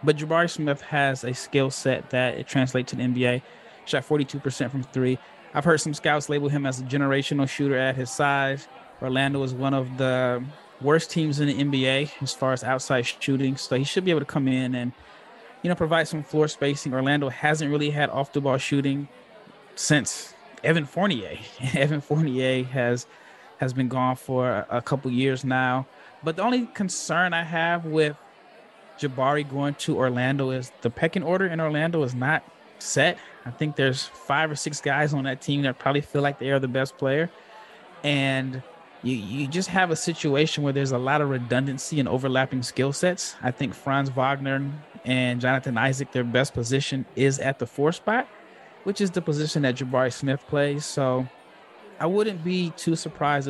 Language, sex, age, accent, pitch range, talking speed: English, male, 20-39, American, 130-150 Hz, 185 wpm